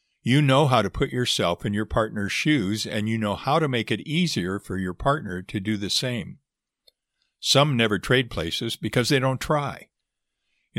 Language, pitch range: English, 95-125 Hz